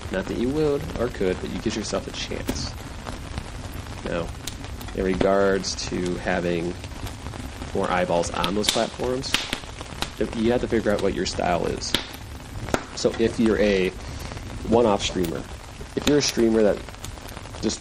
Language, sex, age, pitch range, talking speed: English, male, 30-49, 90-110 Hz, 145 wpm